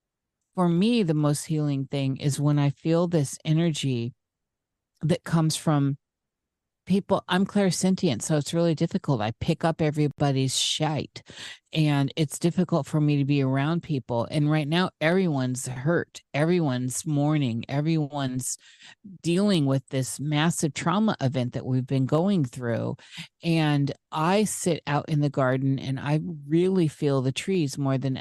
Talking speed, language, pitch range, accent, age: 150 wpm, English, 135-165 Hz, American, 40-59